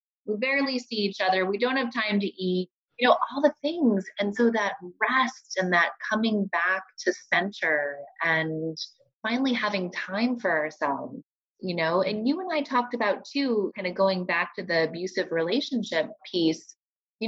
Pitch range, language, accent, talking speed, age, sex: 165-220 Hz, English, American, 175 wpm, 20-39, female